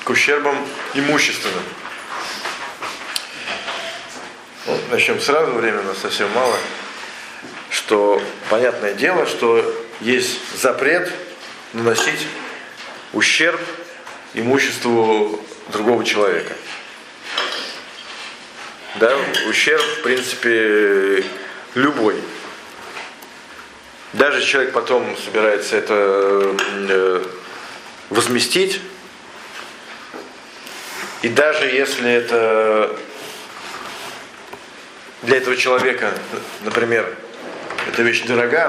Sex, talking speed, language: male, 70 wpm, Russian